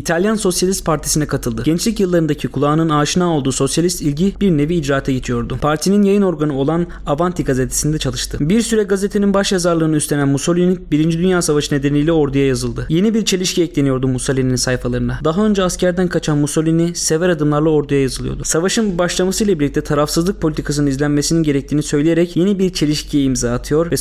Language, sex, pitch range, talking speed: Turkish, male, 145-180 Hz, 160 wpm